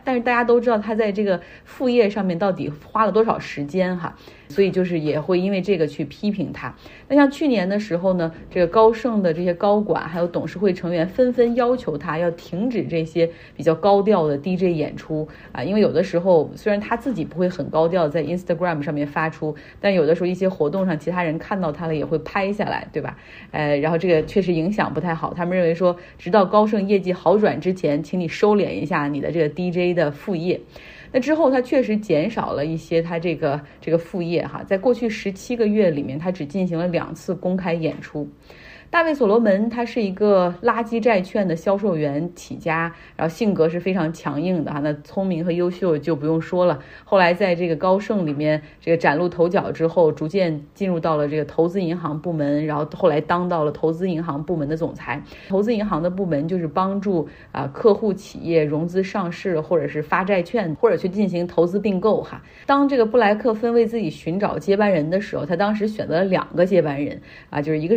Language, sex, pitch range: Chinese, female, 160-200 Hz